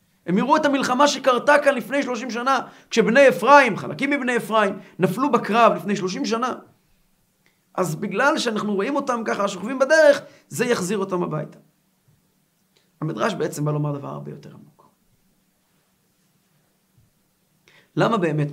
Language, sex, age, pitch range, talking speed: Hebrew, male, 50-69, 170-225 Hz, 135 wpm